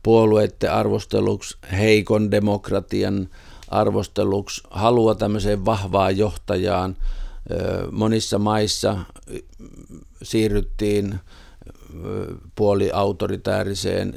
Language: Finnish